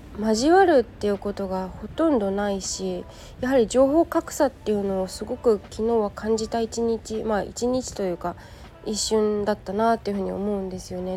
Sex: female